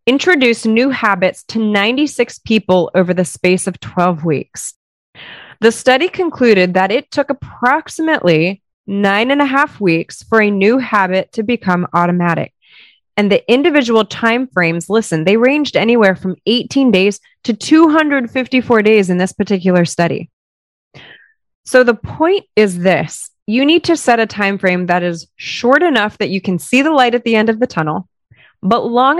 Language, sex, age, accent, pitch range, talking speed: English, female, 20-39, American, 185-245 Hz, 160 wpm